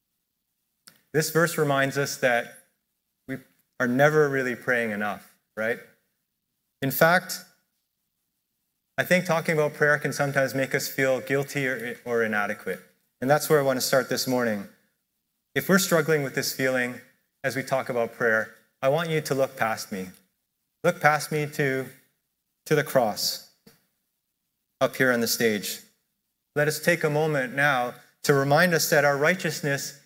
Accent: American